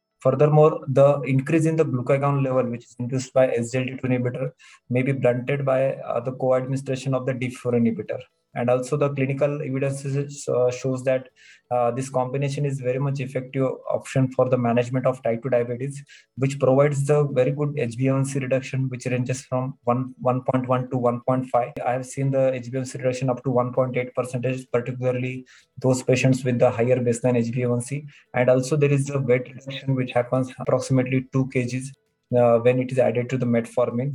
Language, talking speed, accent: English, 175 wpm, Indian